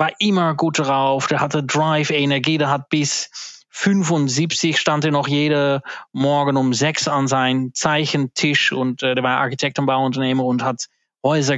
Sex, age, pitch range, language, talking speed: male, 20-39, 130-150 Hz, German, 160 wpm